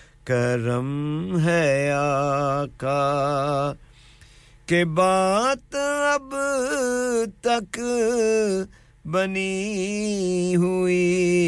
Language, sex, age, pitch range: English, male, 50-69, 140-210 Hz